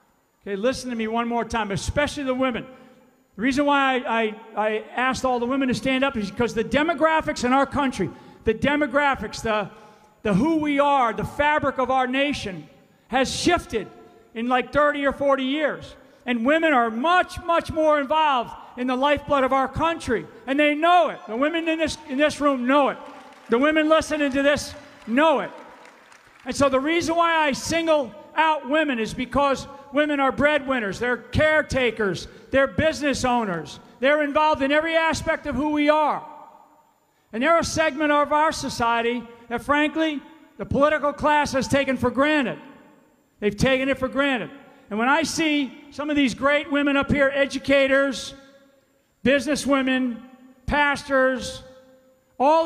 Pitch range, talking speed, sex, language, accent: 245-295 Hz, 170 wpm, male, English, American